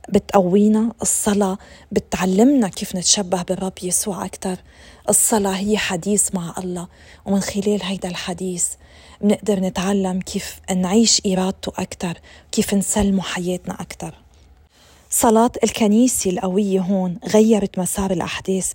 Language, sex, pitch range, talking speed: Arabic, female, 185-215 Hz, 110 wpm